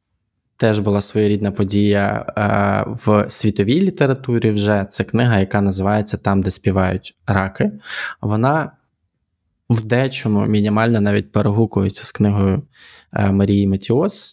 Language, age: Ukrainian, 20-39